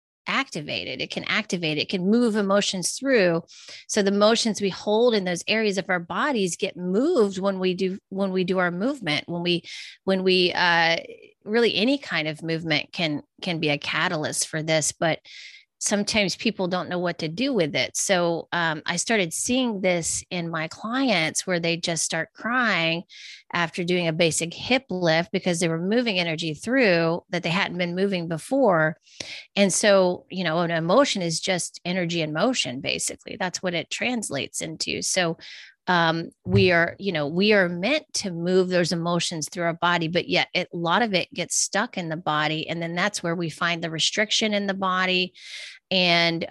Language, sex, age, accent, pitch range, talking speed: English, female, 30-49, American, 165-200 Hz, 185 wpm